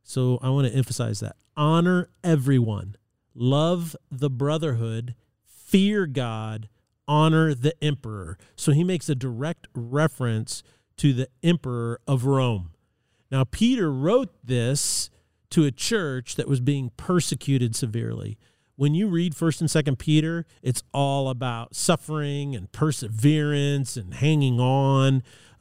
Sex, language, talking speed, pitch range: male, English, 130 wpm, 120-155 Hz